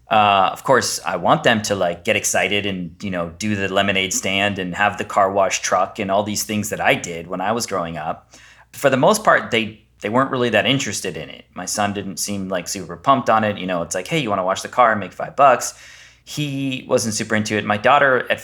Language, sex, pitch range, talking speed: English, male, 95-115 Hz, 255 wpm